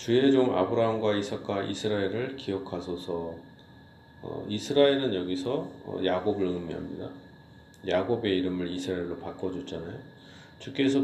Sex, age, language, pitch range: male, 40-59, Korean, 95-125 Hz